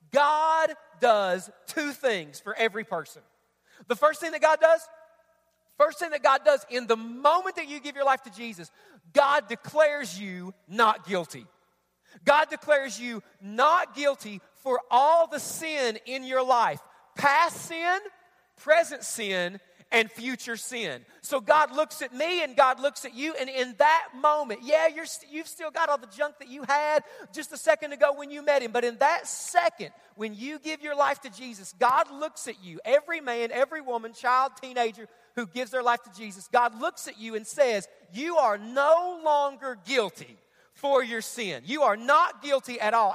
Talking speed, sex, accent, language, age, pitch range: 180 wpm, male, American, English, 40-59, 230-305 Hz